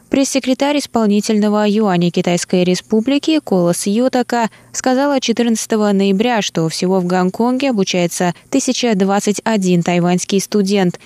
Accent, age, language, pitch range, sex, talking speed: native, 20-39, Russian, 185-230 Hz, female, 100 wpm